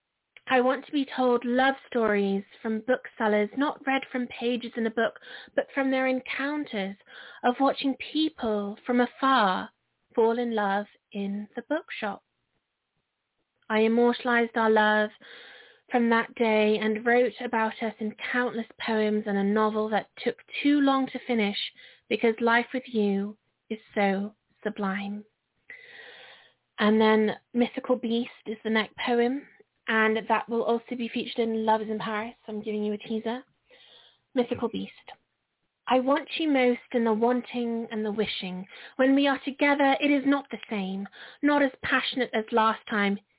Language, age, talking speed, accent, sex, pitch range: English, 30-49, 155 wpm, British, female, 210-255 Hz